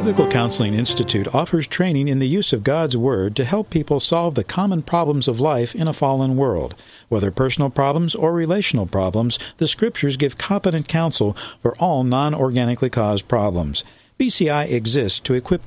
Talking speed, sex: 170 wpm, male